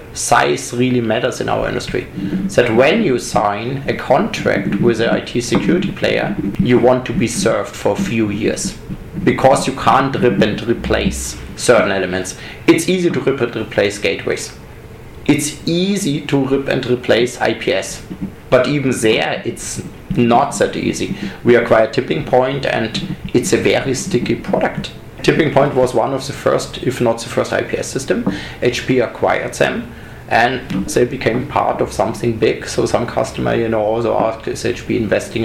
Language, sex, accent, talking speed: English, male, German, 165 wpm